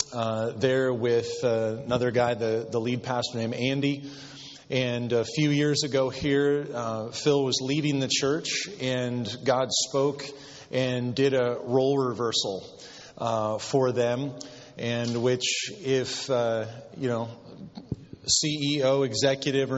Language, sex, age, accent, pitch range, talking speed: English, male, 30-49, American, 125-140 Hz, 135 wpm